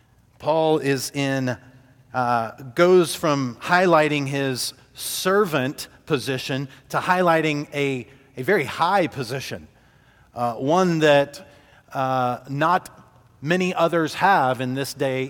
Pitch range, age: 130-170 Hz, 40-59